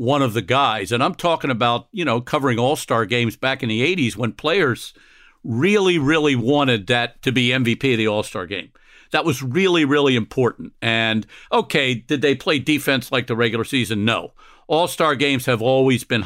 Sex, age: male, 50-69